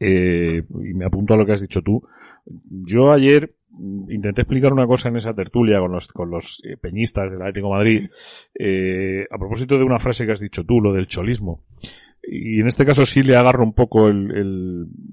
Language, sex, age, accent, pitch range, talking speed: Spanish, male, 40-59, Spanish, 95-120 Hz, 200 wpm